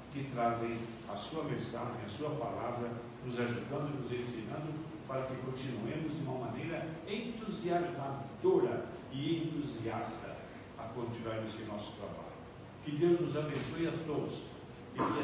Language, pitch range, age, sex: Portuguese, 115-145 Hz, 60-79, male